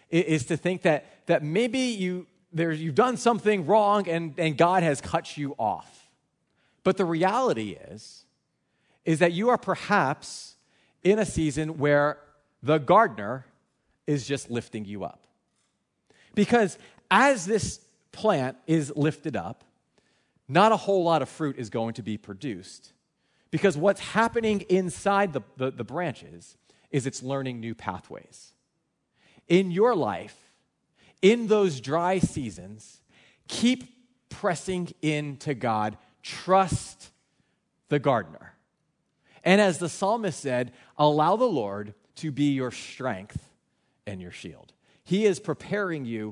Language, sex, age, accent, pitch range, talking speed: English, male, 40-59, American, 130-190 Hz, 135 wpm